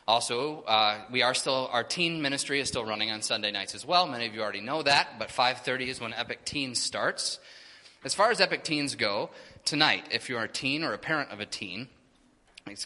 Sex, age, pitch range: male, 20-39, 110-150 Hz